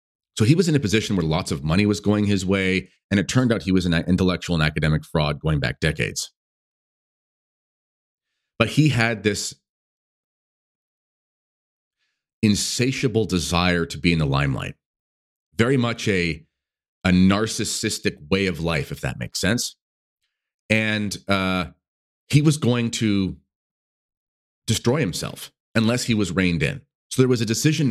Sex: male